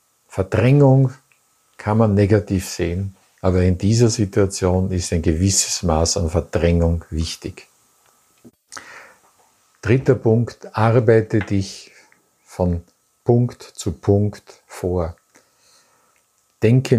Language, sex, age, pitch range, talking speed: German, male, 50-69, 95-120 Hz, 90 wpm